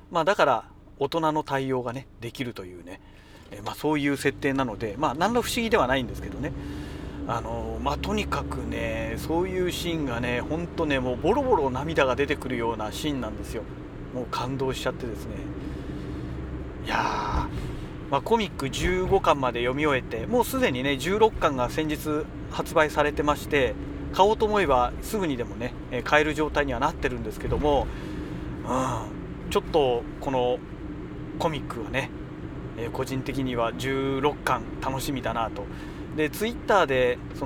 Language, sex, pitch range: Japanese, male, 110-155 Hz